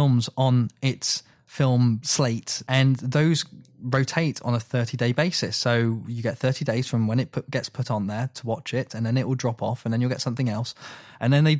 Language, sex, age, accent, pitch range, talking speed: English, male, 20-39, British, 120-145 Hz, 225 wpm